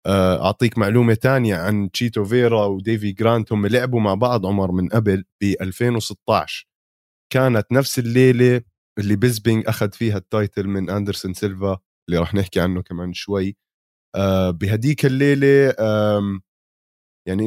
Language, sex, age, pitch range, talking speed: Arabic, male, 20-39, 95-120 Hz, 125 wpm